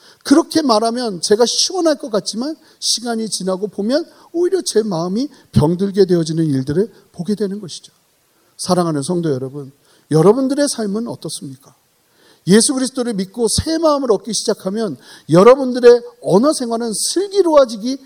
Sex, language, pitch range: male, Korean, 165-250 Hz